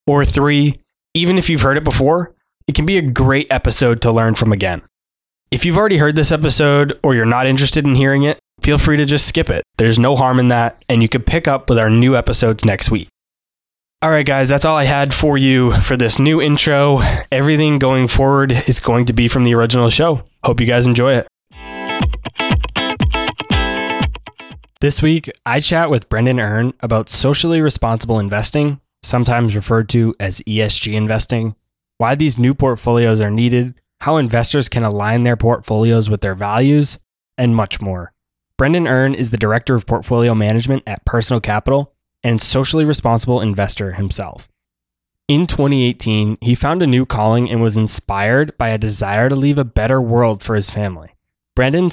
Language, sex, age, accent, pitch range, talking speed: English, male, 20-39, American, 110-140 Hz, 180 wpm